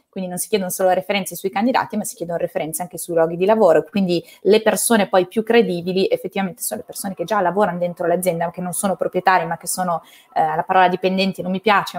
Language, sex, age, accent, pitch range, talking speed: Italian, female, 20-39, native, 175-200 Hz, 230 wpm